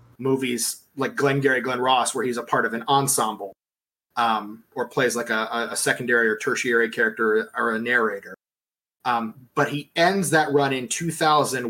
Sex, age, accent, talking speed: male, 30-49, American, 170 wpm